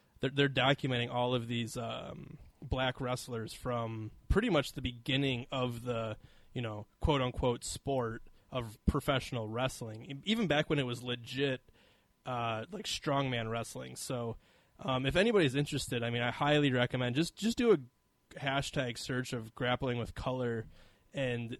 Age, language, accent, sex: 20-39, English, American, male